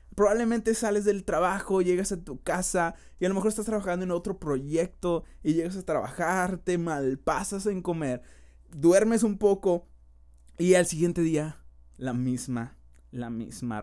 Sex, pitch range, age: male, 145-210 Hz, 20-39